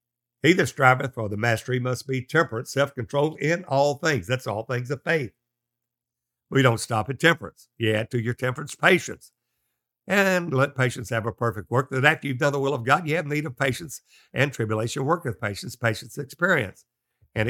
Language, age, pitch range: English, 60-79, 120-140 Hz